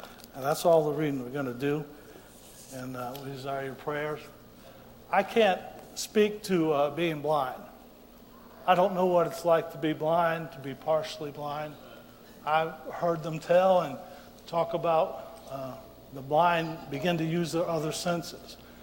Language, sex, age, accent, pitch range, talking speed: English, male, 60-79, American, 155-245 Hz, 165 wpm